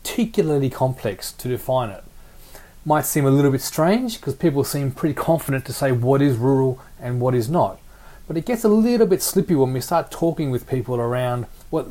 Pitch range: 115-150 Hz